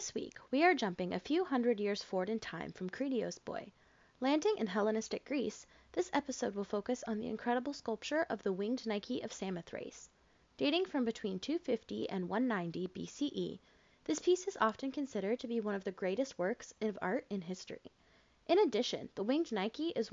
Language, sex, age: English, female, 20-39